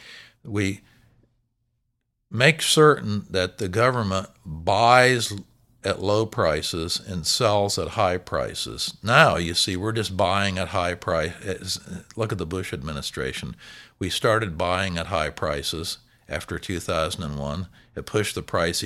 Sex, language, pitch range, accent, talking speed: male, English, 85-110 Hz, American, 130 wpm